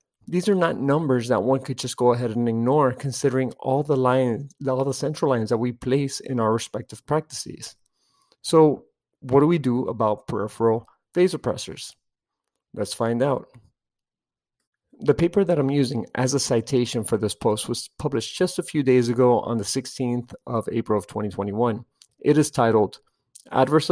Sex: male